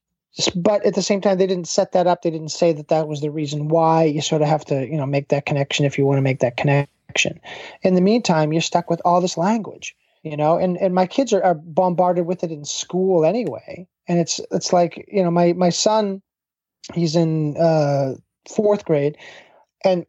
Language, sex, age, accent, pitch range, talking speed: English, male, 30-49, American, 155-195 Hz, 220 wpm